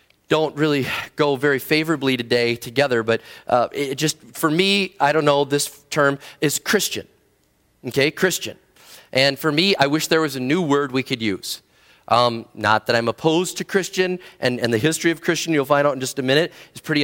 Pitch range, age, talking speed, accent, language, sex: 140-190 Hz, 30-49, 200 wpm, American, English, male